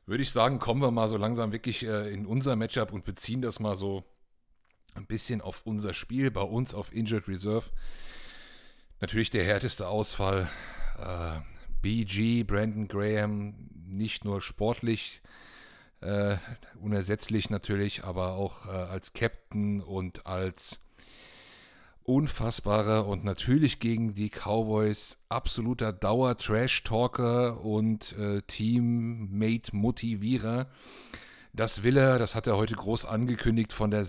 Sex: male